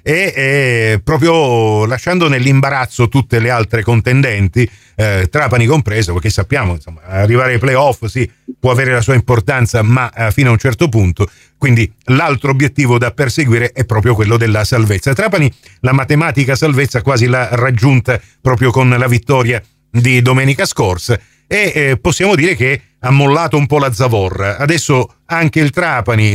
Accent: native